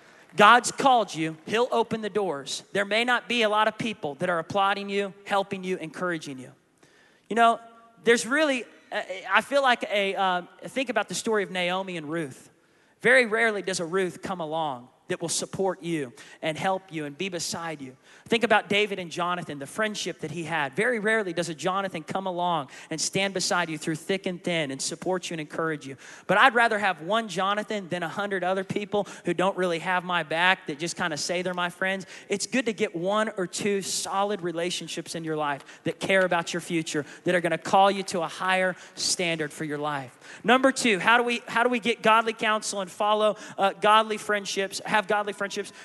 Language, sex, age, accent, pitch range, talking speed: English, male, 30-49, American, 170-215 Hz, 210 wpm